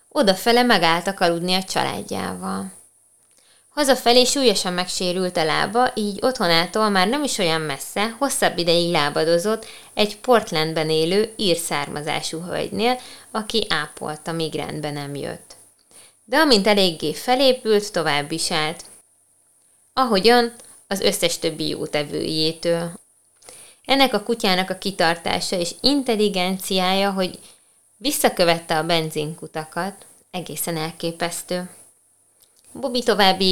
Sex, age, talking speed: female, 20-39, 105 wpm